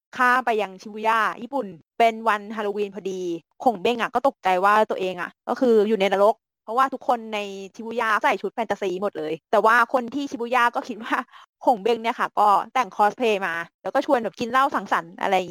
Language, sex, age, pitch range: Thai, female, 20-39, 200-240 Hz